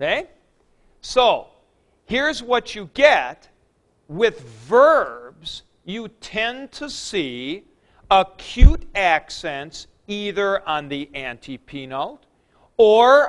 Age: 50-69